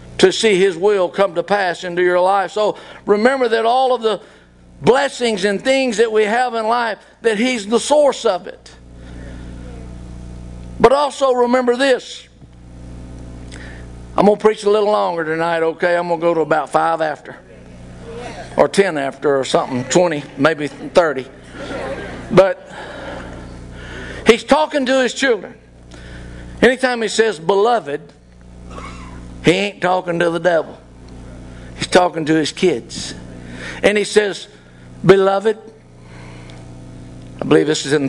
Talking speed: 140 wpm